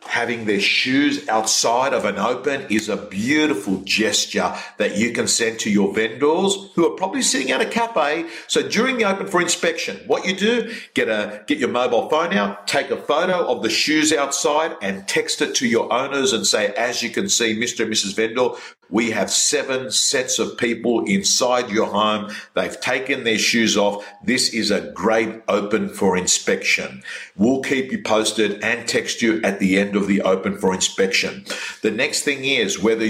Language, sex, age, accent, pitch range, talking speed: English, male, 50-69, Australian, 100-135 Hz, 190 wpm